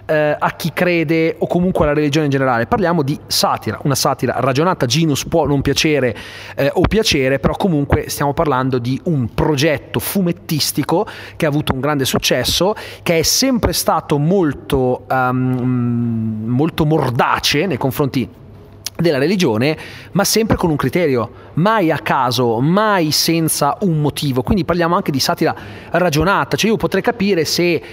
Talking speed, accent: 150 wpm, native